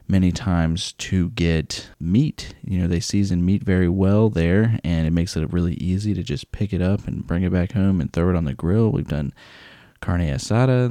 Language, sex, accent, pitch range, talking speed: English, male, American, 80-100 Hz, 215 wpm